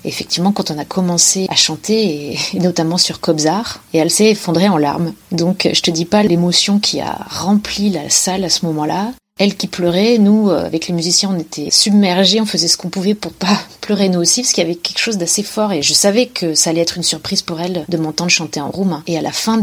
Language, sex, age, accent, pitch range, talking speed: French, female, 30-49, French, 165-200 Hz, 245 wpm